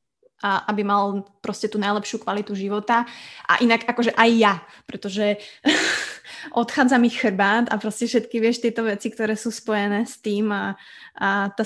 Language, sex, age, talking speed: Slovak, female, 20-39, 160 wpm